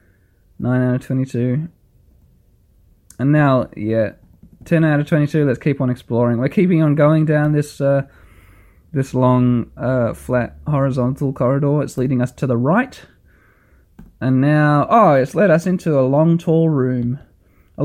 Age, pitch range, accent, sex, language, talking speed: 20-39, 120-150 Hz, Australian, male, English, 155 wpm